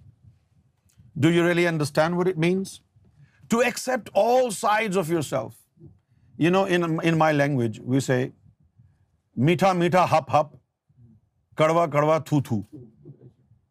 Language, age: Urdu, 50-69